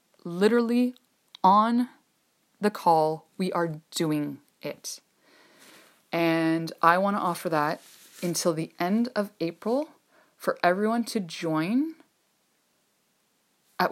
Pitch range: 160-190 Hz